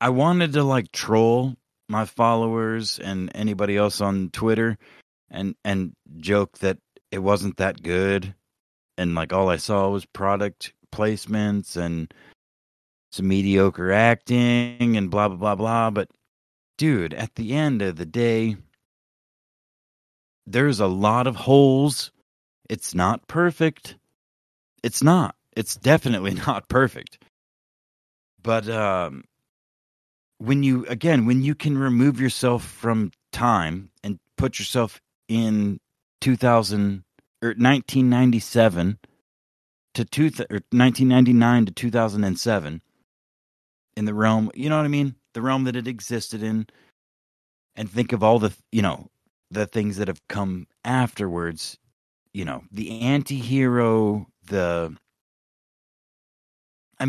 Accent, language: American, English